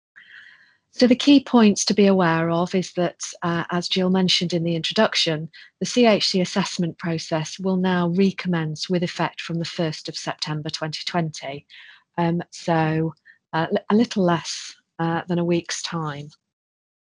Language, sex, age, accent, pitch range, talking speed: English, female, 40-59, British, 155-180 Hz, 155 wpm